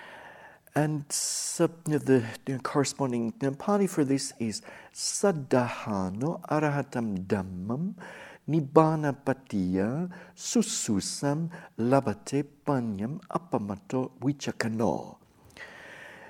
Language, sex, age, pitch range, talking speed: English, male, 60-79, 120-150 Hz, 65 wpm